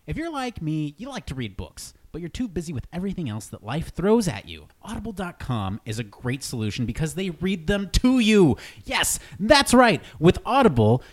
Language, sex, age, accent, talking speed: English, male, 30-49, American, 200 wpm